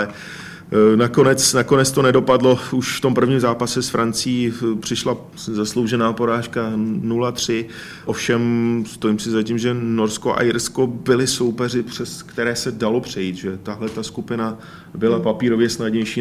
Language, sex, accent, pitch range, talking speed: Czech, male, native, 110-120 Hz, 135 wpm